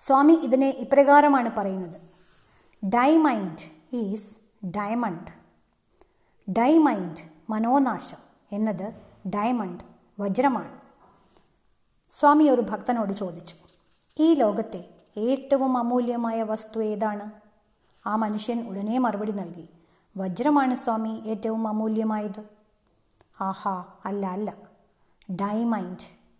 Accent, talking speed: native, 80 wpm